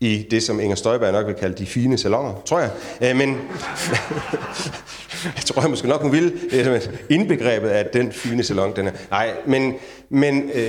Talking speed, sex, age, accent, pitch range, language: 190 wpm, male, 30-49, native, 110-135 Hz, Danish